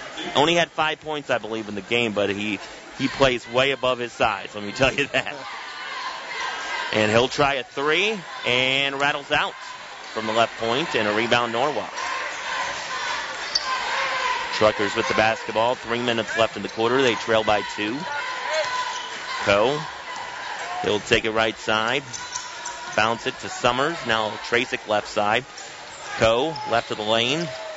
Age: 30-49